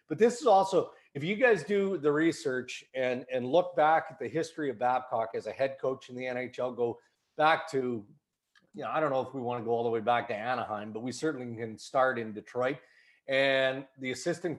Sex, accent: male, American